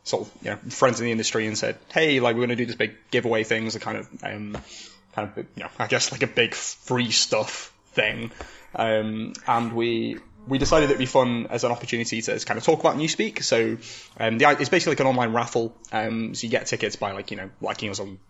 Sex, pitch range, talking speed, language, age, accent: male, 110-125 Hz, 250 wpm, English, 10-29, British